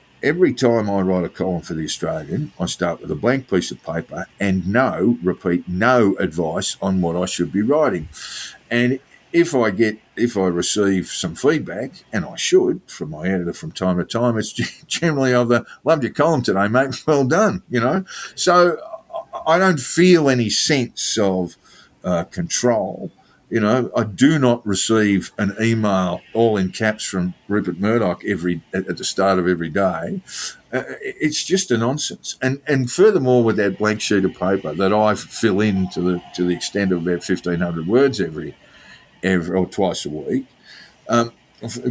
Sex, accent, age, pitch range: male, Australian, 50-69, 95-130 Hz